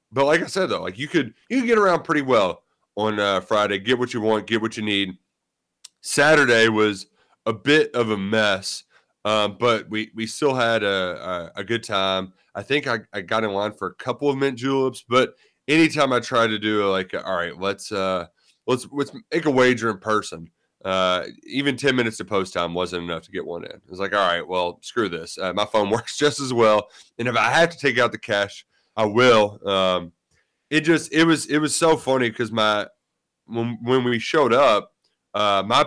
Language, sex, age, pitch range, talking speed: English, male, 30-49, 105-140 Hz, 220 wpm